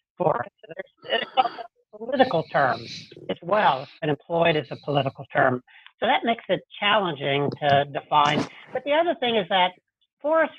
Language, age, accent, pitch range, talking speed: English, 60-79, American, 150-210 Hz, 145 wpm